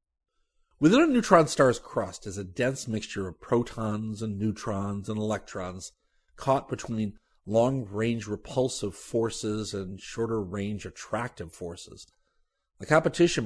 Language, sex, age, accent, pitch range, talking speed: English, male, 40-59, American, 100-120 Hz, 115 wpm